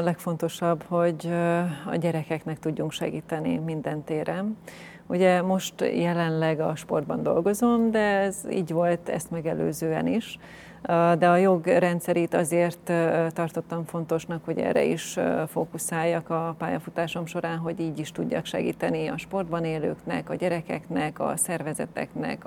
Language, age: Hungarian, 30-49